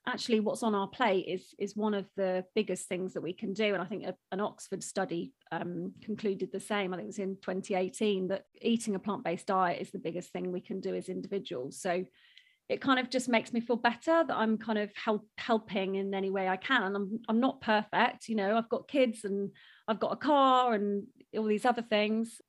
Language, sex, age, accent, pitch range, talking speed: English, female, 30-49, British, 195-245 Hz, 230 wpm